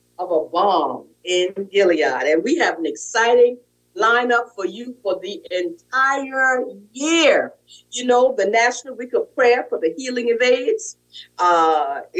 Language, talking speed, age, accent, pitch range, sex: English, 150 wpm, 50-69, American, 240-370 Hz, female